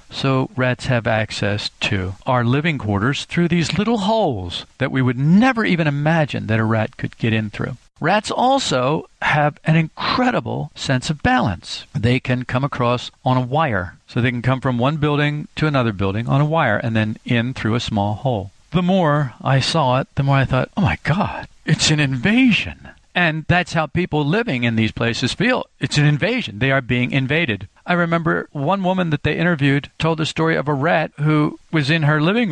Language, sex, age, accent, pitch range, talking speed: English, male, 50-69, American, 115-160 Hz, 200 wpm